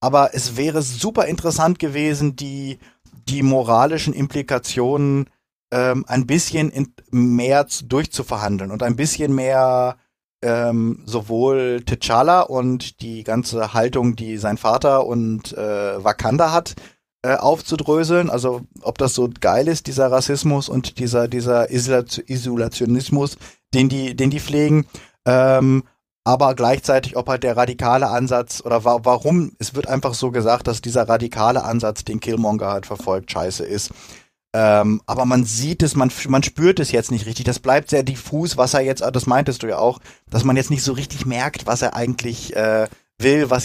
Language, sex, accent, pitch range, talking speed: German, male, German, 115-140 Hz, 160 wpm